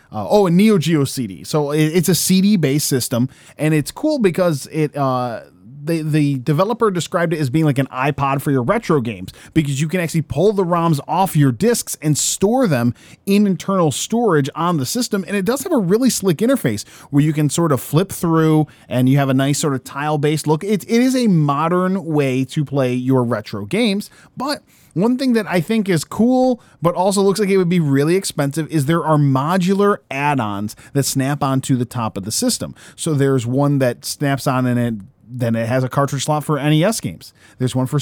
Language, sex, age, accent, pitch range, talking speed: English, male, 20-39, American, 130-180 Hz, 215 wpm